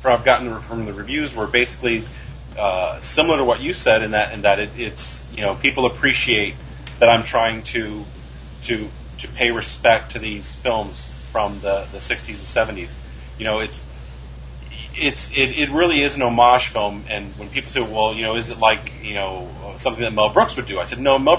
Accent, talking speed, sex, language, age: American, 205 wpm, male, English, 30-49